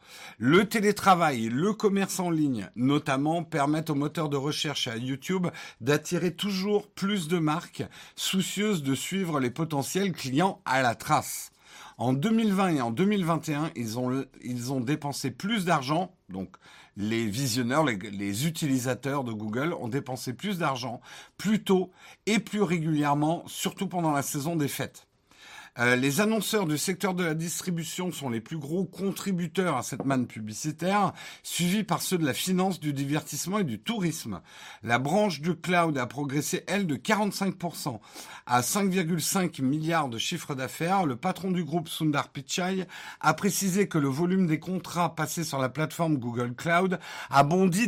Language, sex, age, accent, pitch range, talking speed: French, male, 50-69, French, 140-185 Hz, 160 wpm